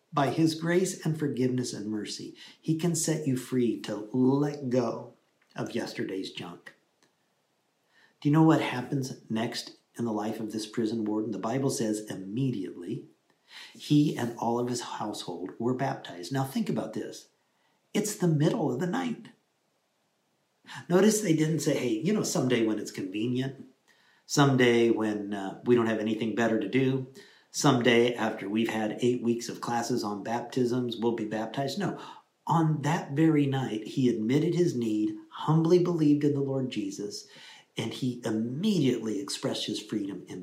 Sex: male